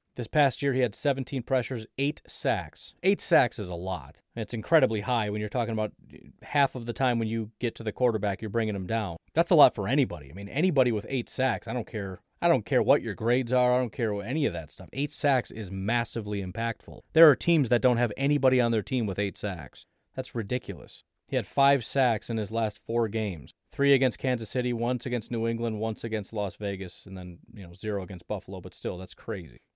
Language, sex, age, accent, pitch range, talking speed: English, male, 30-49, American, 110-140 Hz, 230 wpm